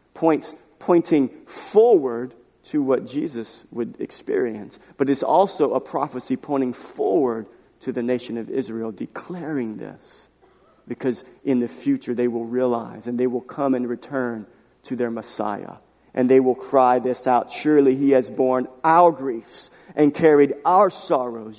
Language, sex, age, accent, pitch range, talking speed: English, male, 40-59, American, 125-175 Hz, 150 wpm